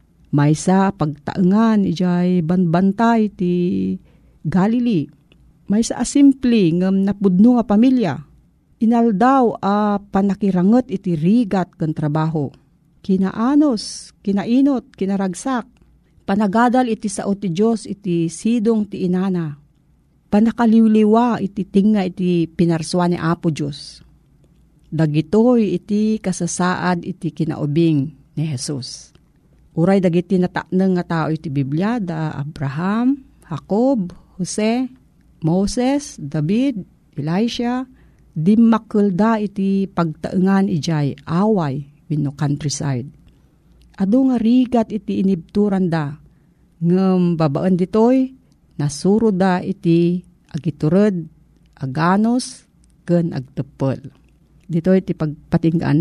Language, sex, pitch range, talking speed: Filipino, female, 160-215 Hz, 95 wpm